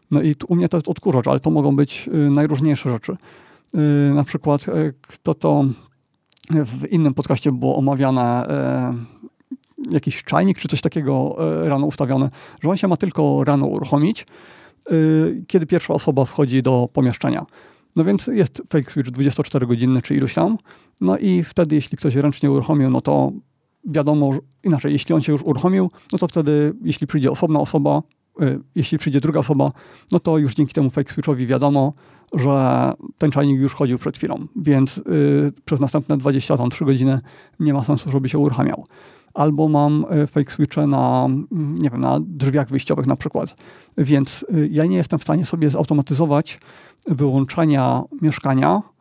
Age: 40-59